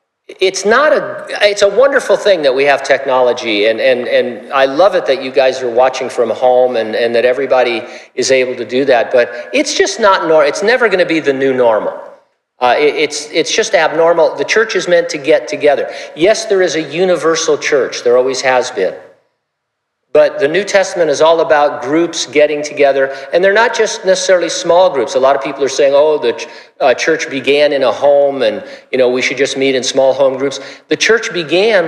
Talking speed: 215 wpm